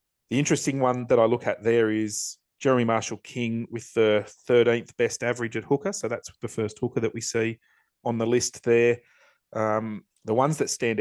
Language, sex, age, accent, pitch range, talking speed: English, male, 30-49, Australian, 105-115 Hz, 195 wpm